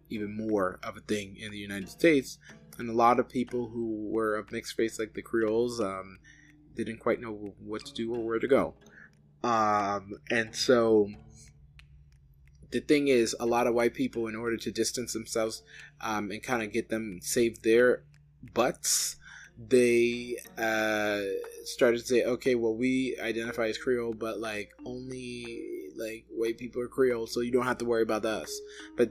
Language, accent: English, American